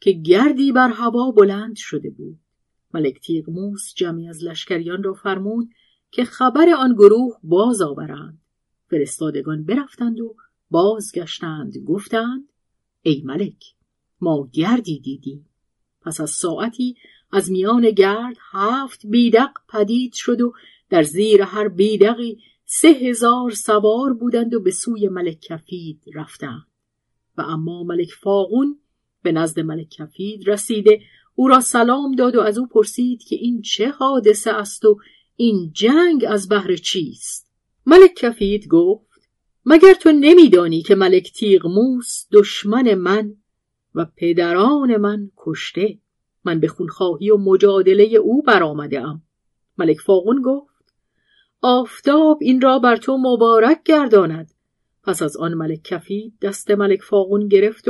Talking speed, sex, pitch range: 130 wpm, female, 180-245 Hz